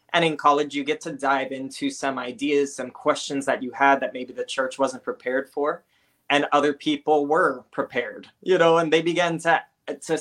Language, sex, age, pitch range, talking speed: English, male, 20-39, 130-150 Hz, 200 wpm